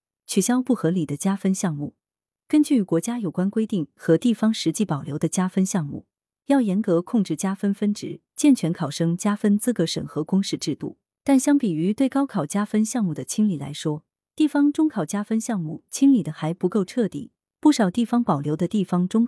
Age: 30-49